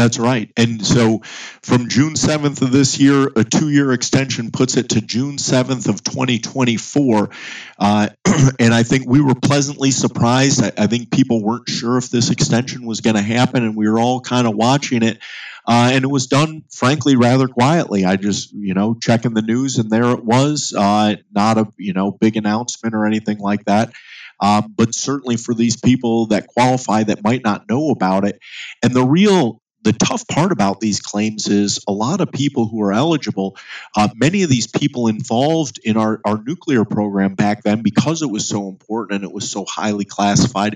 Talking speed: 195 wpm